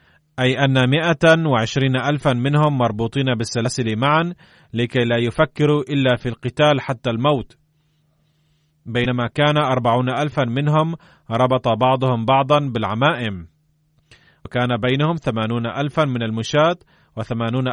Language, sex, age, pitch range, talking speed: Arabic, male, 30-49, 120-150 Hz, 110 wpm